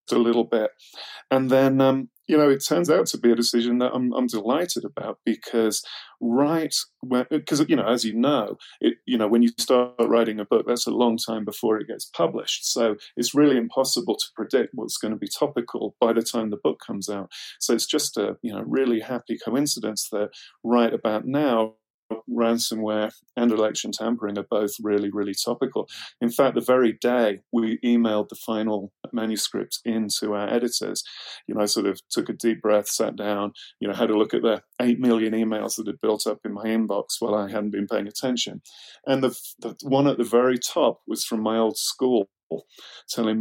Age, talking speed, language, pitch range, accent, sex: 30-49, 200 wpm, English, 105-120 Hz, British, male